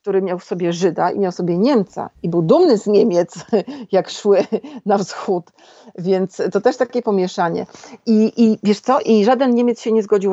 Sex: female